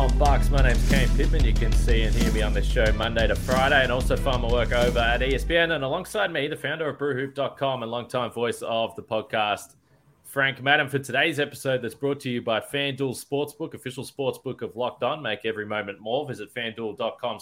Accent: Australian